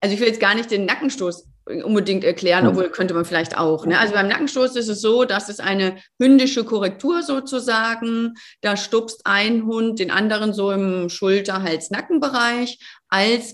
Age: 30-49